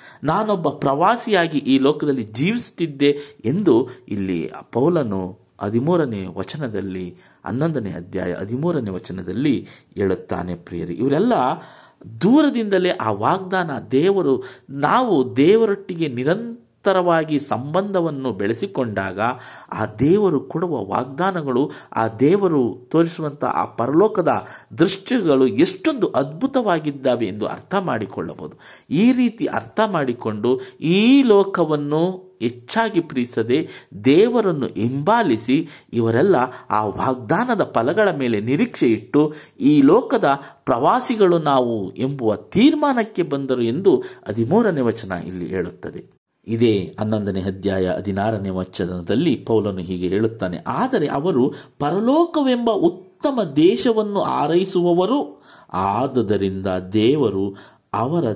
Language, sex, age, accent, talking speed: Kannada, male, 50-69, native, 90 wpm